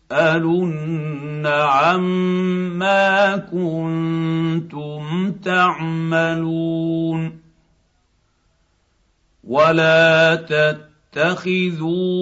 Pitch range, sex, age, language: 160-180 Hz, male, 50-69, Arabic